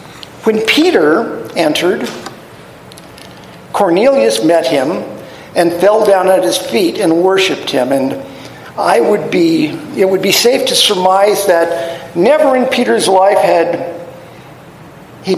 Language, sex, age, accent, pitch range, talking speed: English, male, 50-69, American, 160-210 Hz, 125 wpm